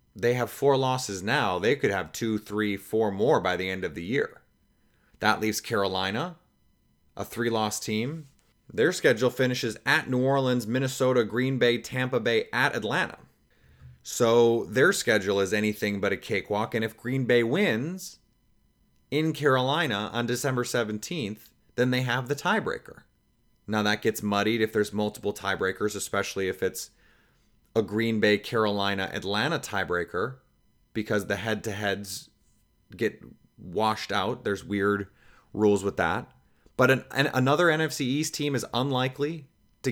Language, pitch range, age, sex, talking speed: English, 105-140 Hz, 30-49, male, 145 wpm